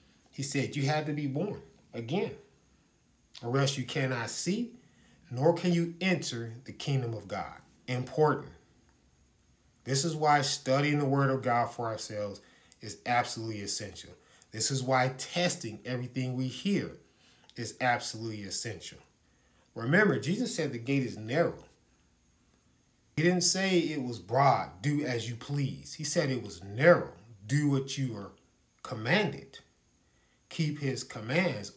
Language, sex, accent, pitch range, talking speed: English, male, American, 120-150 Hz, 140 wpm